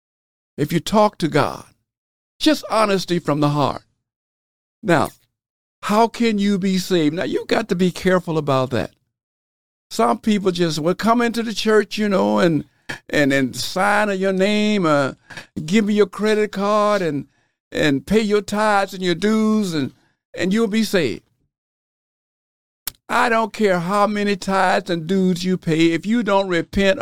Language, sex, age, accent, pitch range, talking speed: English, male, 50-69, American, 145-210 Hz, 160 wpm